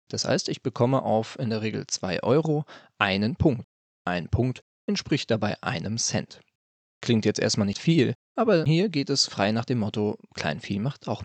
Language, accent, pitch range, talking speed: German, German, 105-140 Hz, 185 wpm